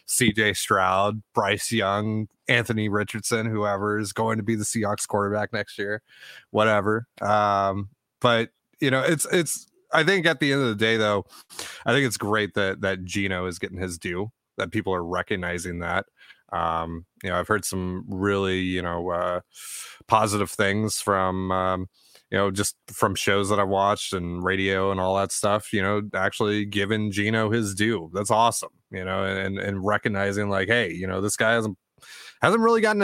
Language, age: English, 20-39